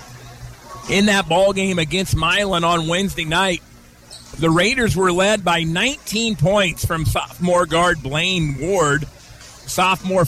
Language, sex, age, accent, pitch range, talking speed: English, male, 40-59, American, 155-190 Hz, 125 wpm